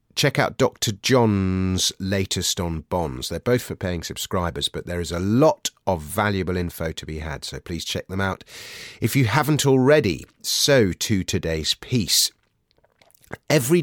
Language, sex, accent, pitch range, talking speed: English, male, British, 85-120 Hz, 160 wpm